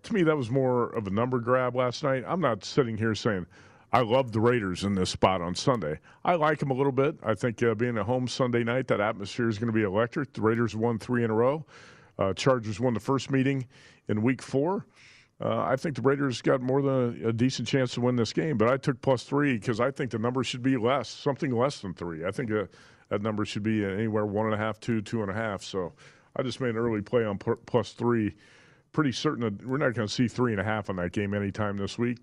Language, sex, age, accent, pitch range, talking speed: English, male, 50-69, American, 110-130 Hz, 260 wpm